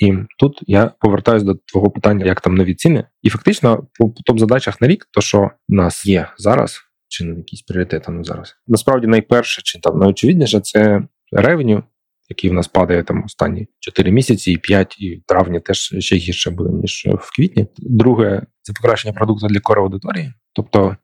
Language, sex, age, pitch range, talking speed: Ukrainian, male, 20-39, 95-110 Hz, 180 wpm